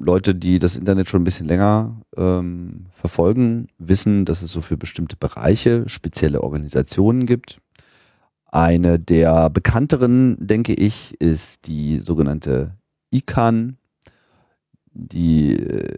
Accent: German